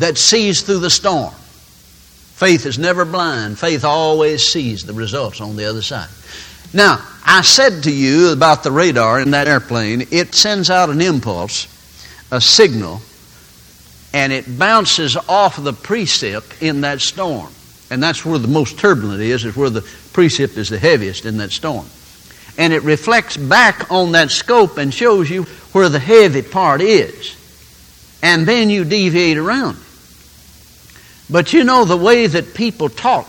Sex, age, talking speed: male, 60-79, 160 wpm